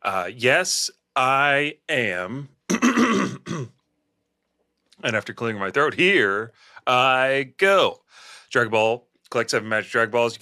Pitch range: 115-155 Hz